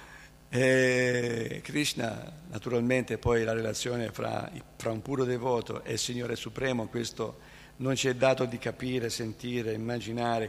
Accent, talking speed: native, 130 wpm